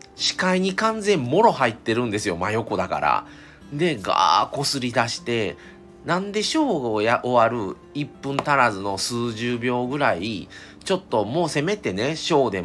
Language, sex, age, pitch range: Japanese, male, 40-59, 95-160 Hz